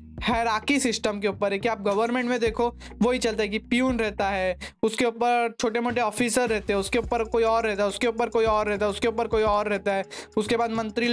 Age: 20-39